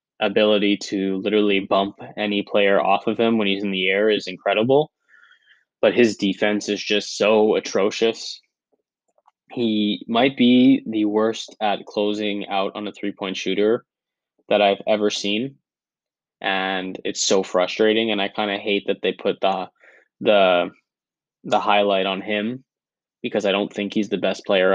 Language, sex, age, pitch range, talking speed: English, male, 10-29, 95-105 Hz, 160 wpm